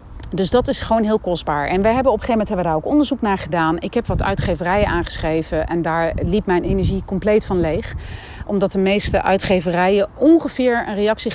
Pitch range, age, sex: 185-245 Hz, 30-49, female